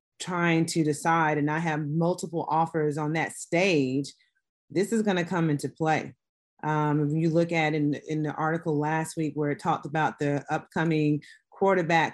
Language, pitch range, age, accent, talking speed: English, 155-180 Hz, 30-49, American, 180 wpm